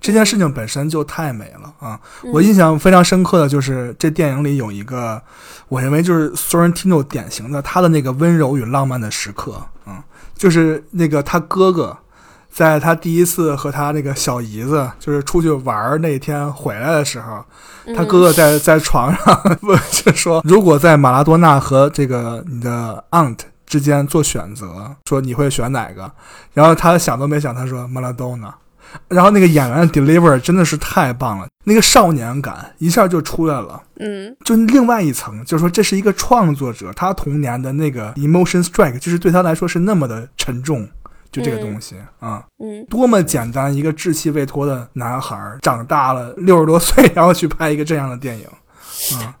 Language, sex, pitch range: Chinese, male, 130-175 Hz